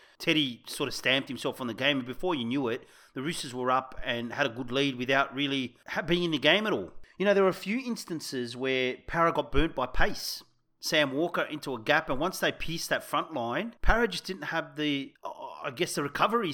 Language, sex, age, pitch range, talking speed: English, male, 30-49, 125-170 Hz, 230 wpm